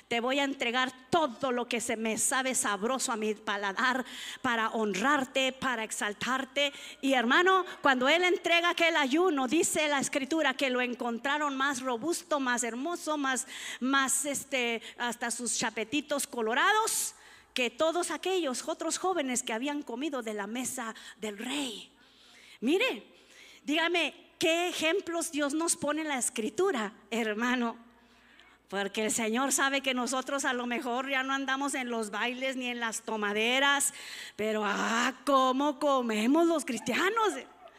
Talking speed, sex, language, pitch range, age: 145 wpm, female, Spanish, 240-320 Hz, 40-59